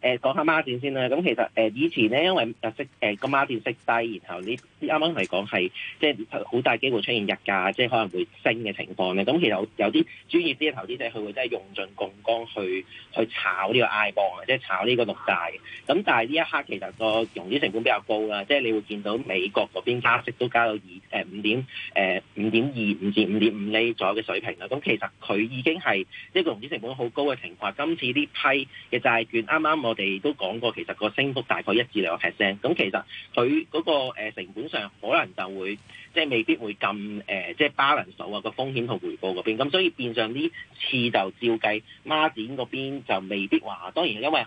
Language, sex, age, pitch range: Chinese, male, 40-59, 105-145 Hz